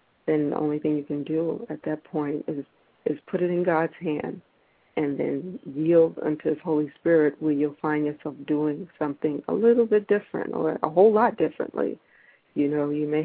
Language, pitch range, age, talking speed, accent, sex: English, 150-160 Hz, 40-59, 195 wpm, American, female